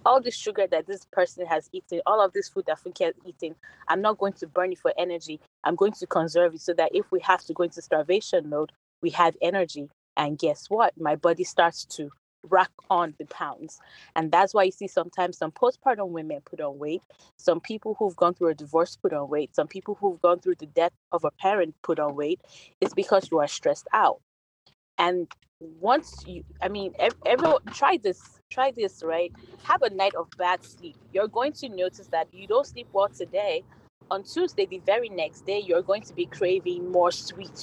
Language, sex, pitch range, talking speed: English, female, 165-200 Hz, 215 wpm